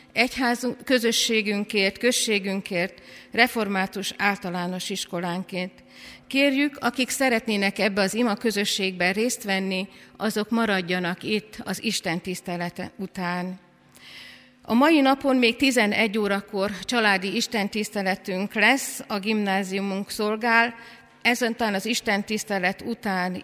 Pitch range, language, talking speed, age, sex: 195-245 Hz, Hungarian, 100 wpm, 50-69, female